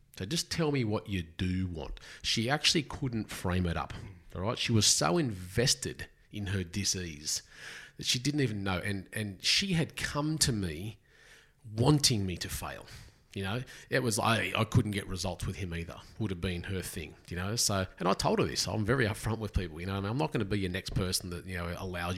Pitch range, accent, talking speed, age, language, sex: 85-110 Hz, Australian, 235 wpm, 30-49, English, male